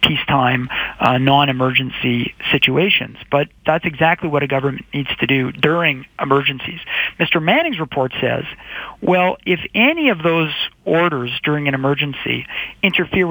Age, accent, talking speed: 40-59, American, 130 wpm